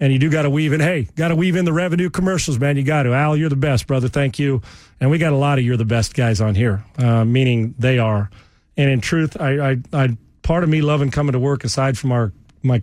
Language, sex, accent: English, male, American